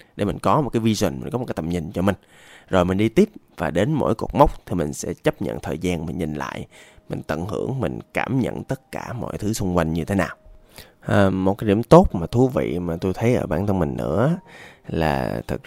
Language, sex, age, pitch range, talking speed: Vietnamese, male, 20-39, 85-115 Hz, 255 wpm